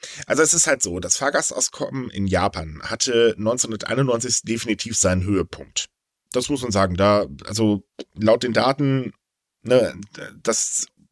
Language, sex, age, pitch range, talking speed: German, male, 10-29, 100-140 Hz, 135 wpm